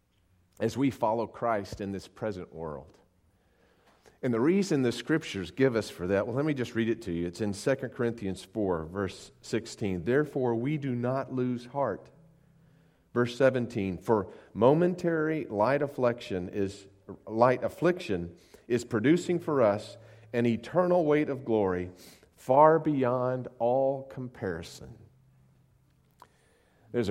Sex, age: male, 40-59